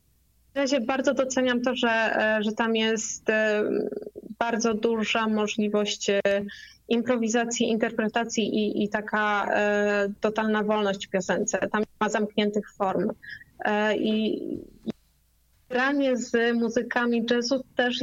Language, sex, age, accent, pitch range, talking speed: Polish, female, 20-39, native, 205-230 Hz, 115 wpm